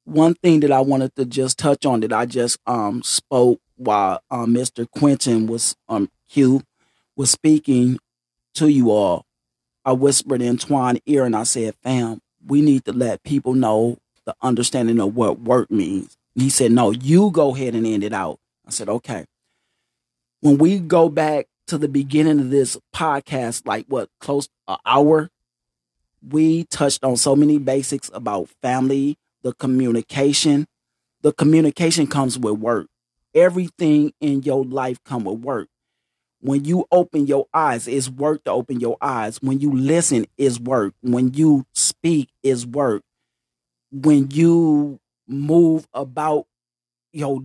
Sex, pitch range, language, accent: male, 120-150 Hz, English, American